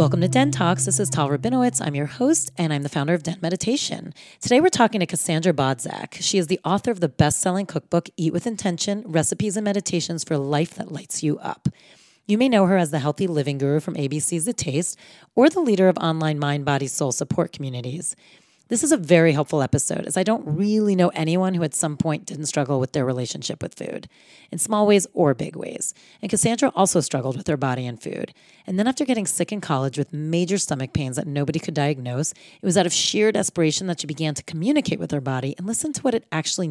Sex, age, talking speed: female, 30-49, 225 wpm